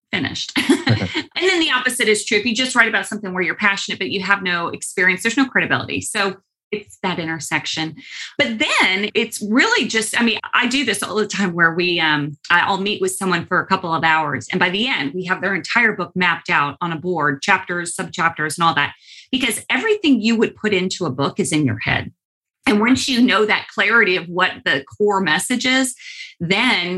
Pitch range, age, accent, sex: 170-215 Hz, 30-49, American, female